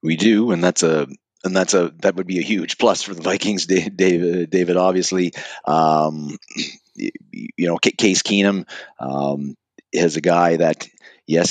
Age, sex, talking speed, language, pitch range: 30-49, male, 160 wpm, English, 85-105 Hz